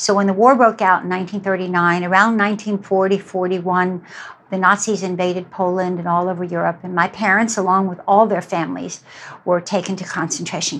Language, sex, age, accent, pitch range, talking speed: English, female, 60-79, American, 180-200 Hz, 170 wpm